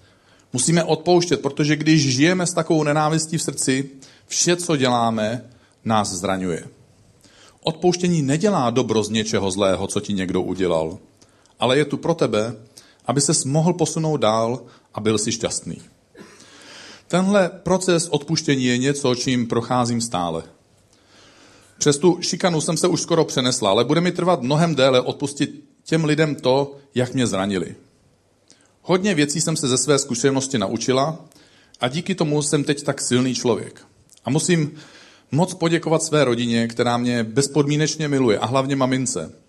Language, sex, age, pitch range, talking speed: Czech, male, 40-59, 115-155 Hz, 150 wpm